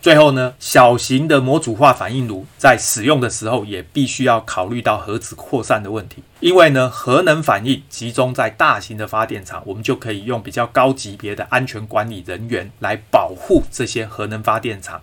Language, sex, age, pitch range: Chinese, male, 30-49, 105-135 Hz